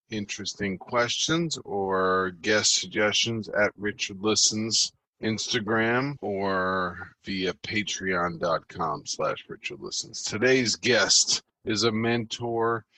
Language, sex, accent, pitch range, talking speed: English, male, American, 95-115 Hz, 95 wpm